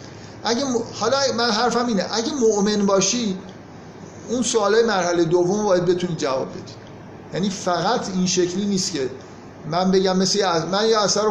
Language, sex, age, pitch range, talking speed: Persian, male, 50-69, 165-200 Hz, 165 wpm